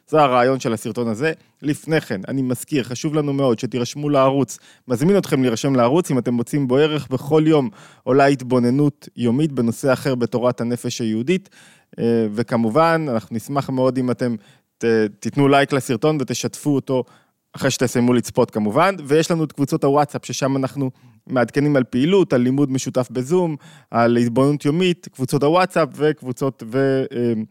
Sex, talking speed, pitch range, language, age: male, 150 wpm, 120-145 Hz, Hebrew, 20-39